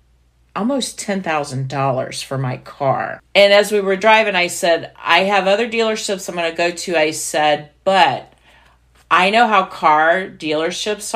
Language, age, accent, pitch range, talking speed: English, 40-59, American, 145-195 Hz, 165 wpm